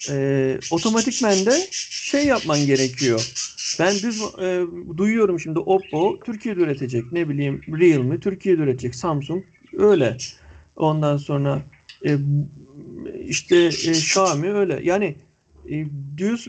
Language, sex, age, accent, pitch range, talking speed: Turkish, male, 50-69, native, 135-205 Hz, 115 wpm